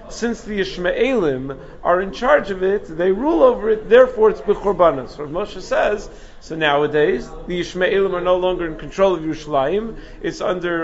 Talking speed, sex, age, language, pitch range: 170 wpm, male, 40-59, English, 155-205 Hz